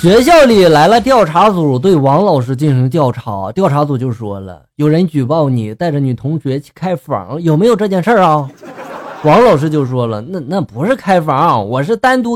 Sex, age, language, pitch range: male, 20-39, Chinese, 130-215 Hz